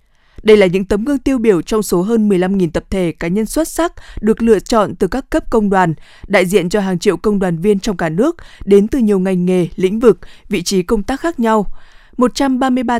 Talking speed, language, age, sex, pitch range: 230 wpm, Vietnamese, 20-39, female, 185-230 Hz